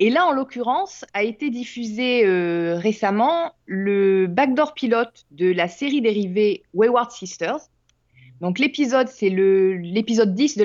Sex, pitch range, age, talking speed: female, 195-260 Hz, 20-39, 135 wpm